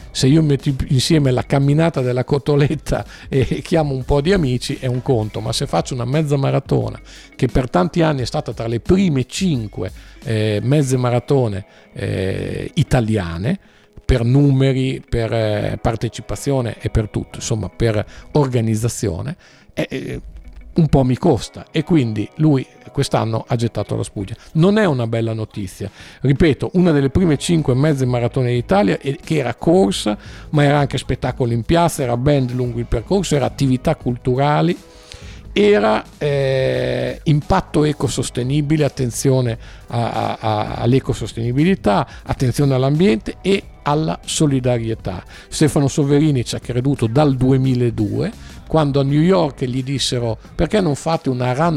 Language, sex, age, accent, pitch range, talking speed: Italian, male, 50-69, native, 115-150 Hz, 145 wpm